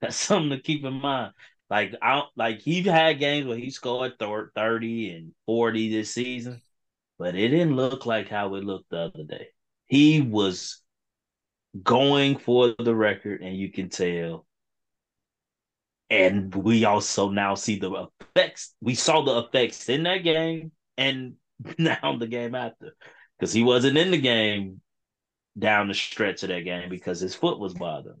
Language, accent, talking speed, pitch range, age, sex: English, American, 165 wpm, 100-130 Hz, 20-39, male